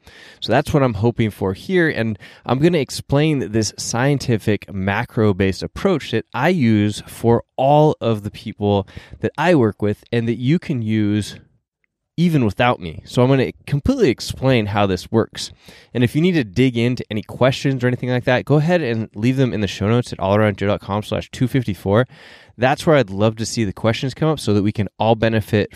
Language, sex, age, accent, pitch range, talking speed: English, male, 20-39, American, 100-125 Hz, 205 wpm